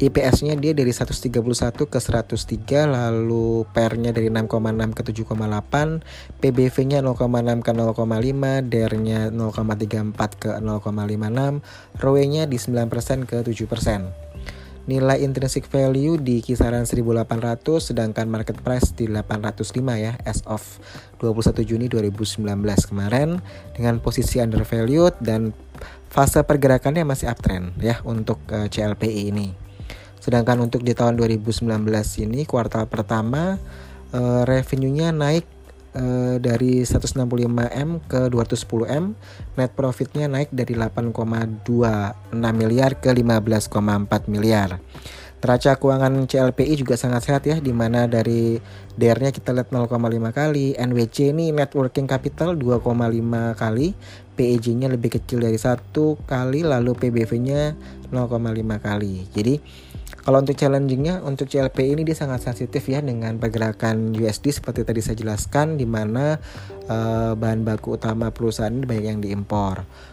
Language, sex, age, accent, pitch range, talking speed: Indonesian, male, 20-39, native, 110-130 Hz, 115 wpm